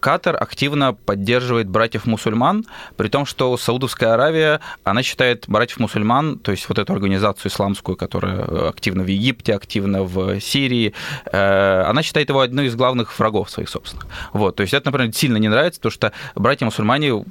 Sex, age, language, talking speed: male, 20-39, Russian, 165 wpm